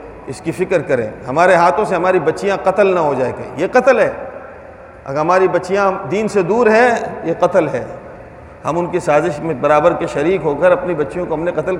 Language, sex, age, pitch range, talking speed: Urdu, male, 40-59, 150-210 Hz, 220 wpm